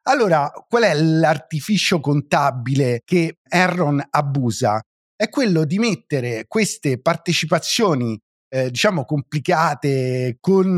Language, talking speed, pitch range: Italian, 100 wpm, 140-190 Hz